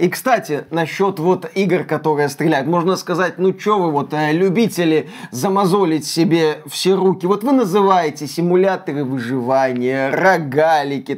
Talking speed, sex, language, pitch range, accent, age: 135 wpm, male, Russian, 160-225 Hz, native, 20-39